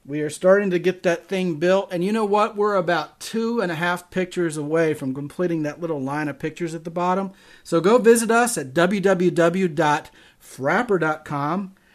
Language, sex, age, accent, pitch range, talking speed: English, male, 40-59, American, 140-180 Hz, 180 wpm